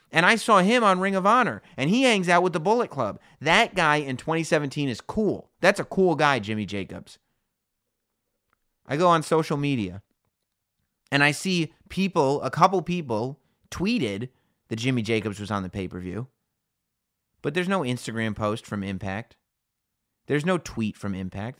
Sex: male